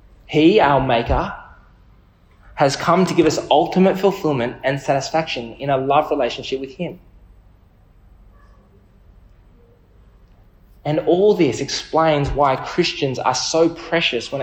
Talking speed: 115 wpm